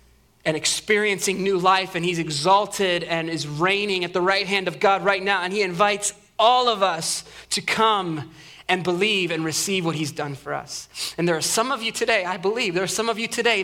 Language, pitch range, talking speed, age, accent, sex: English, 165-220 Hz, 220 wpm, 20-39, American, male